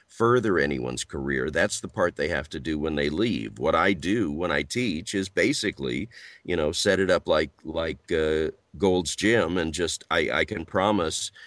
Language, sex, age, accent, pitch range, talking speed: English, male, 50-69, American, 75-100 Hz, 195 wpm